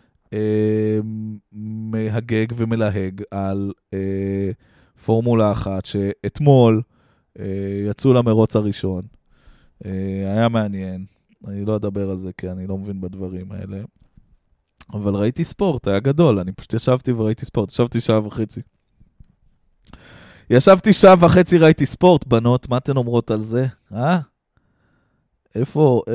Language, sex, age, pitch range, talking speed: Hebrew, male, 20-39, 100-140 Hz, 120 wpm